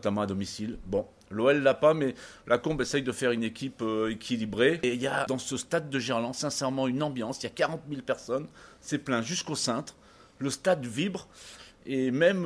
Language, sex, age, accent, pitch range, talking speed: French, male, 40-59, French, 120-150 Hz, 210 wpm